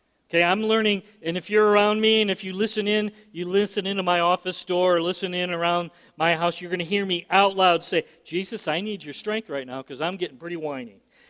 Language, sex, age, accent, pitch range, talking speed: English, male, 40-59, American, 170-215 Hz, 235 wpm